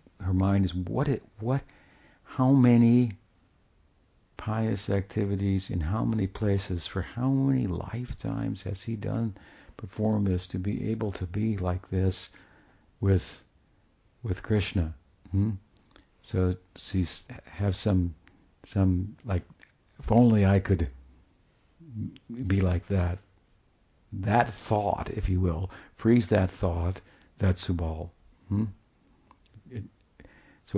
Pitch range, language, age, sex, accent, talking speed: 90-110 Hz, English, 60-79, male, American, 115 wpm